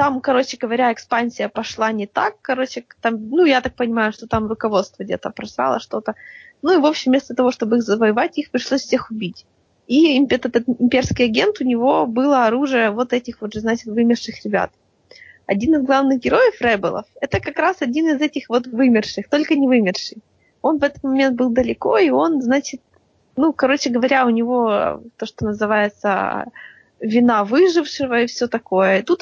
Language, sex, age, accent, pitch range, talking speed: Russian, female, 20-39, native, 225-270 Hz, 175 wpm